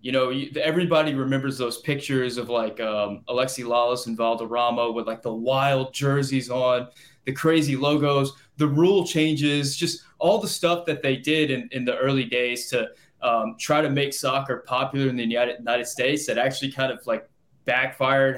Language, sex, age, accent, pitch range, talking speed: English, male, 20-39, American, 125-150 Hz, 175 wpm